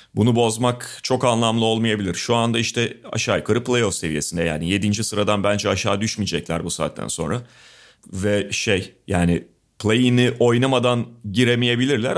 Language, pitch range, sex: Turkish, 110-145 Hz, male